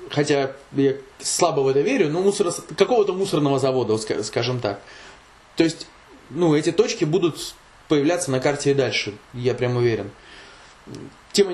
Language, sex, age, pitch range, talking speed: Russian, male, 20-39, 130-160 Hz, 145 wpm